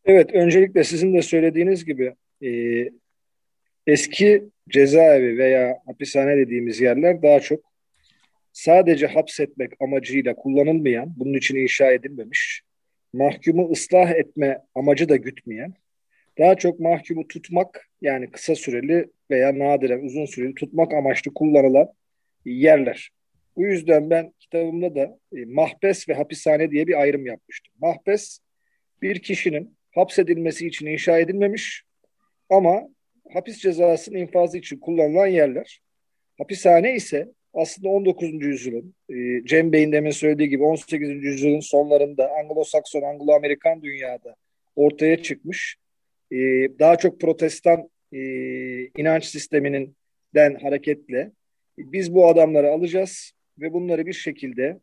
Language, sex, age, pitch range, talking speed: Turkish, male, 40-59, 140-175 Hz, 115 wpm